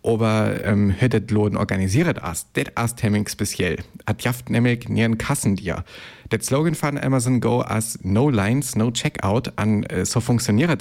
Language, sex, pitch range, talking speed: German, male, 100-120 Hz, 160 wpm